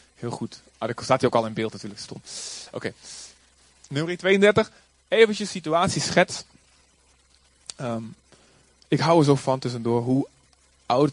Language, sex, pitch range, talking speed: Dutch, male, 120-170 Hz, 145 wpm